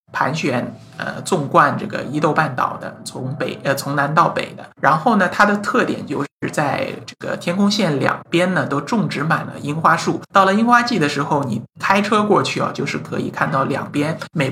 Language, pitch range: Chinese, 140-190 Hz